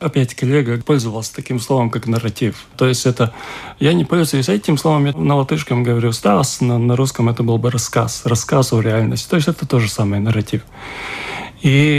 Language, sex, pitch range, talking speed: Russian, male, 120-150 Hz, 185 wpm